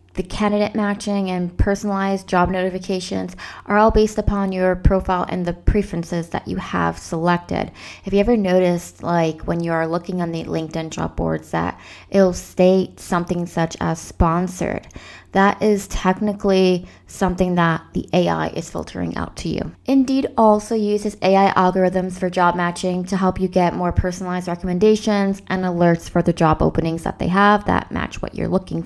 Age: 20-39